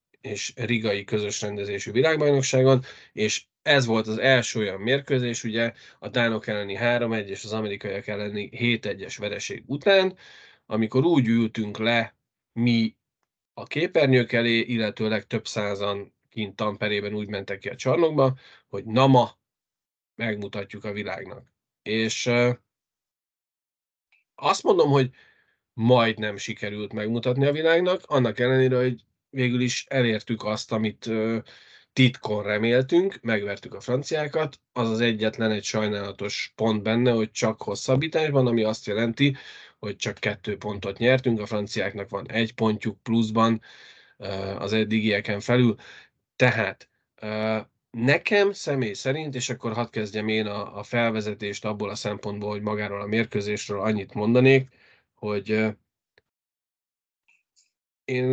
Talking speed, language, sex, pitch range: 125 wpm, Hungarian, male, 105-125 Hz